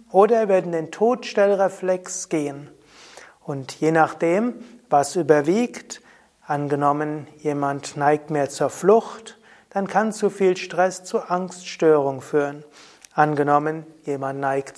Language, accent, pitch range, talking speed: German, German, 150-185 Hz, 110 wpm